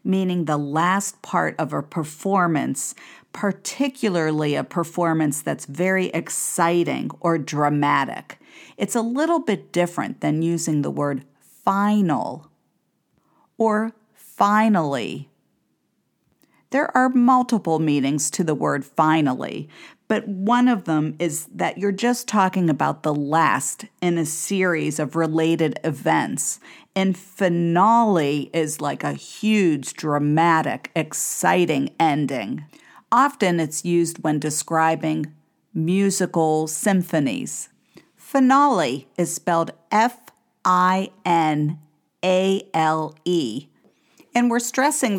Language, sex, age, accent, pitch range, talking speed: English, female, 50-69, American, 155-210 Hz, 100 wpm